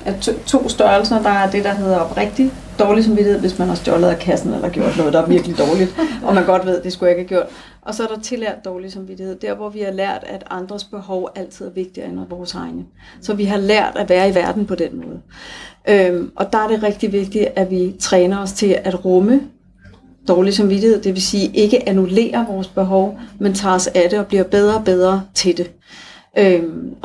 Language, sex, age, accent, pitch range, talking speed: Danish, female, 40-59, native, 185-210 Hz, 230 wpm